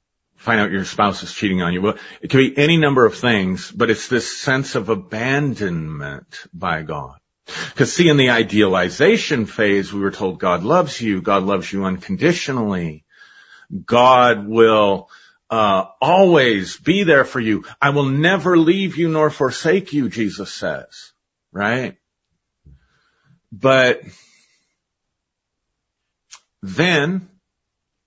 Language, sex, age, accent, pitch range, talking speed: English, male, 50-69, American, 95-130 Hz, 130 wpm